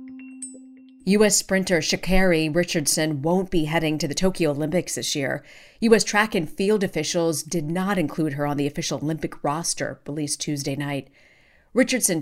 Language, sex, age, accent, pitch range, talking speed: English, female, 40-59, American, 150-190 Hz, 150 wpm